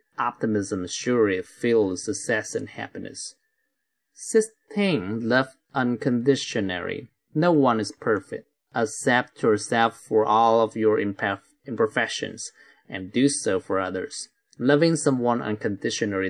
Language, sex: Chinese, male